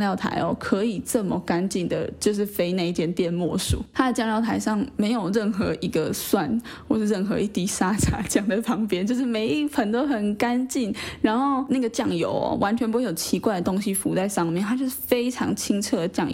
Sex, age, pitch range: female, 10-29, 200-255 Hz